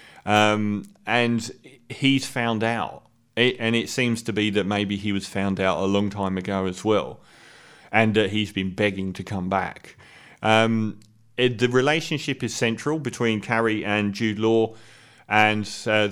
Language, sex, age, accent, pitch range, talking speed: English, male, 30-49, British, 100-120 Hz, 155 wpm